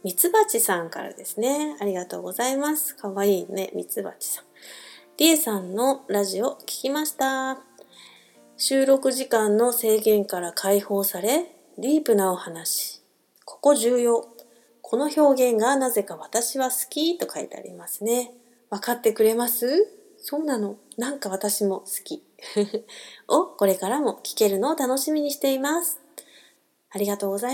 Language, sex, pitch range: Japanese, female, 210-295 Hz